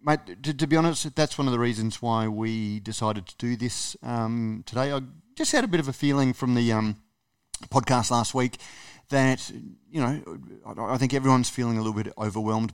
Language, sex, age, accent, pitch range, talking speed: English, male, 30-49, Australian, 110-130 Hz, 205 wpm